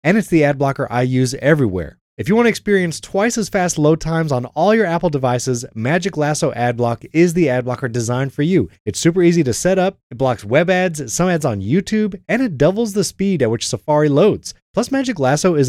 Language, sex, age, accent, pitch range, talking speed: English, male, 20-39, American, 125-180 Hz, 230 wpm